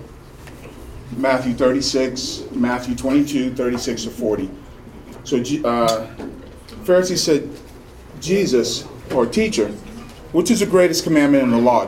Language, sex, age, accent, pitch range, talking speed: English, male, 40-59, American, 110-175 Hz, 110 wpm